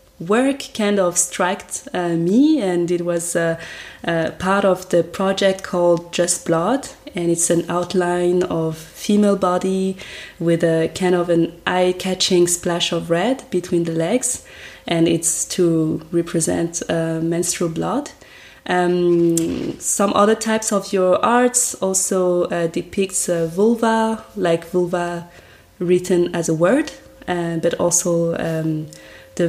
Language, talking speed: French, 135 wpm